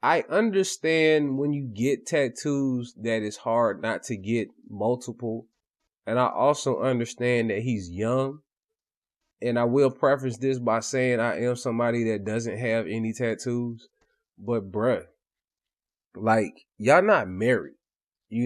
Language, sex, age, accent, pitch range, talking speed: English, male, 20-39, American, 120-155 Hz, 135 wpm